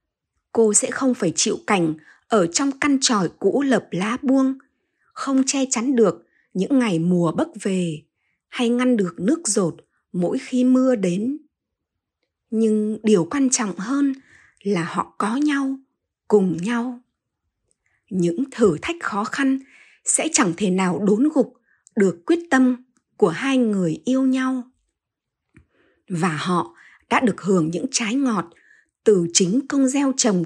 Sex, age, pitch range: female, 20-39, 180-265 Hz